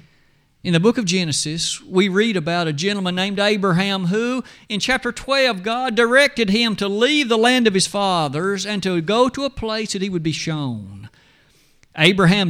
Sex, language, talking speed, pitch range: male, English, 180 wpm, 150-210 Hz